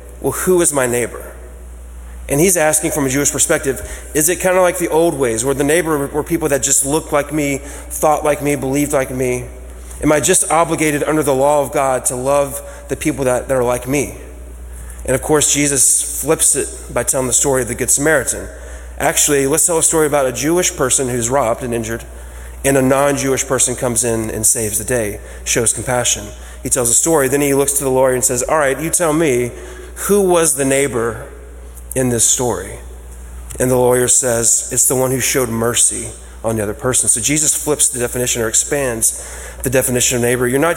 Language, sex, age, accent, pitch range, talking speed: English, male, 30-49, American, 115-145 Hz, 210 wpm